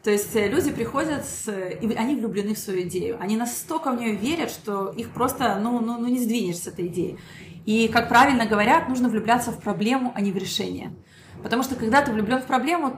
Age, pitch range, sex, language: 30-49, 195-245 Hz, female, Russian